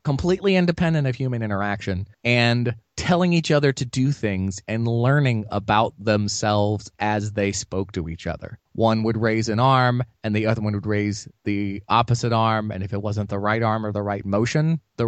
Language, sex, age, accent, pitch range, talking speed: English, male, 30-49, American, 105-130 Hz, 190 wpm